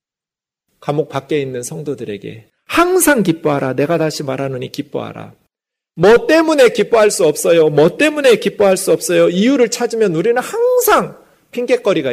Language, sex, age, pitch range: Korean, male, 40-59, 130-185 Hz